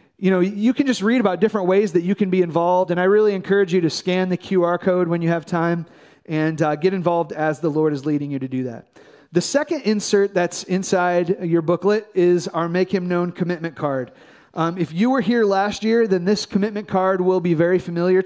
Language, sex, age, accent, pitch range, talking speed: English, male, 30-49, American, 170-200 Hz, 230 wpm